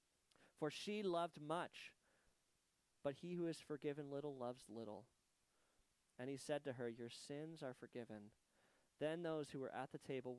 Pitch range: 125-165 Hz